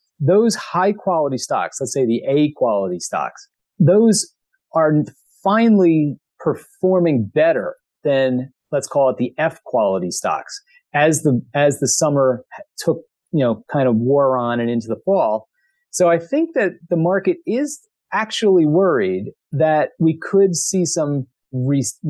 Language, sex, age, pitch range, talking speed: English, male, 40-59, 135-180 Hz, 145 wpm